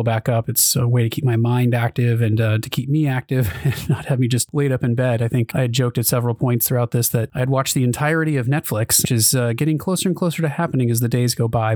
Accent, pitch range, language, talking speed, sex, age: American, 125-155 Hz, English, 290 wpm, male, 30-49